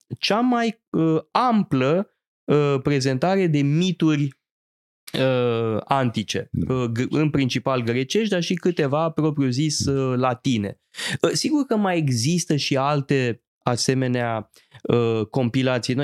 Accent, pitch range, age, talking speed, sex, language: native, 115-150 Hz, 20-39, 115 wpm, male, Romanian